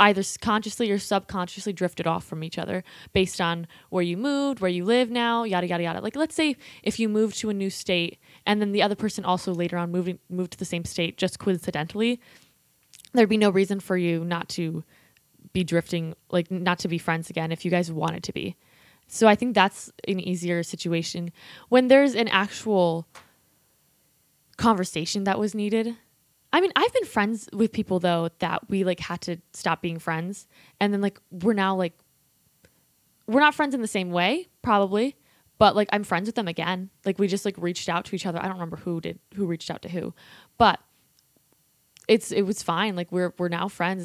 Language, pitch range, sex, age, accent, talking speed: English, 175-210 Hz, female, 10-29, American, 205 wpm